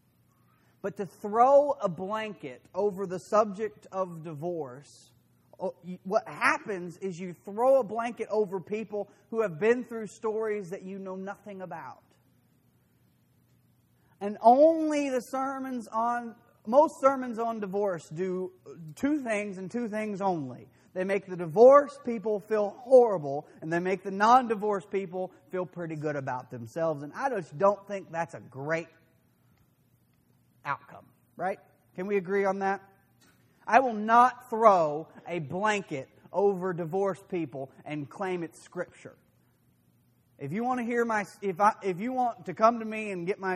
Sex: male